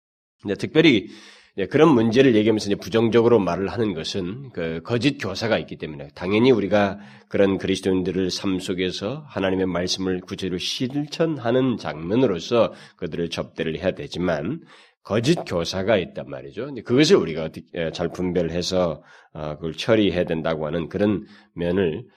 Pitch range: 85-110 Hz